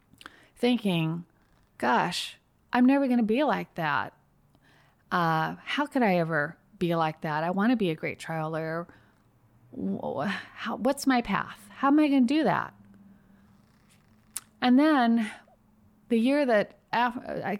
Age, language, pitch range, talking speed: 30-49, English, 165-230 Hz, 140 wpm